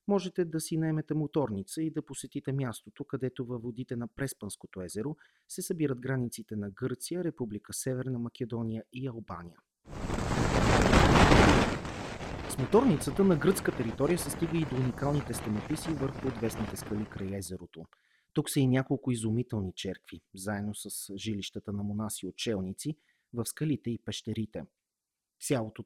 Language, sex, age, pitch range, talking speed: Bulgarian, male, 30-49, 110-145 Hz, 135 wpm